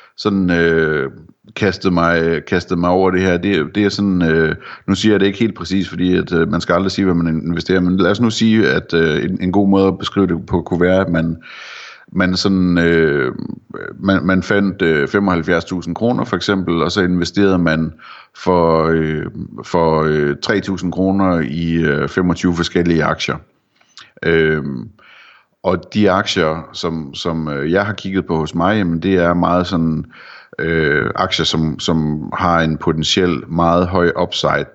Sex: male